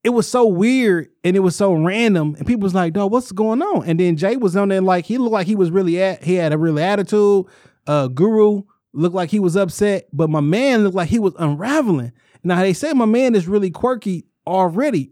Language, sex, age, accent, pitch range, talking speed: English, male, 20-39, American, 155-205 Hz, 240 wpm